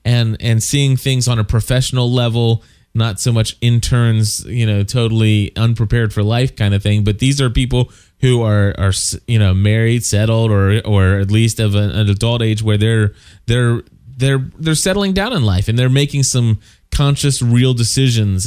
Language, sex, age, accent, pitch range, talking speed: English, male, 20-39, American, 105-125 Hz, 185 wpm